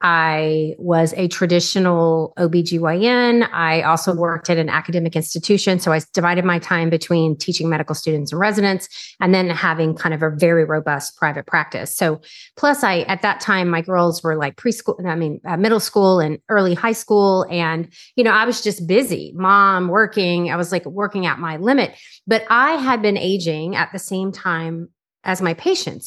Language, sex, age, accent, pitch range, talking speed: English, female, 30-49, American, 170-210 Hz, 185 wpm